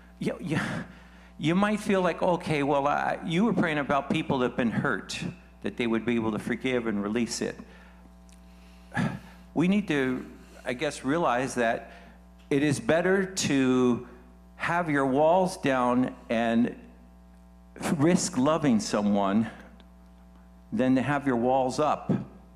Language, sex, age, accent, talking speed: English, male, 60-79, American, 135 wpm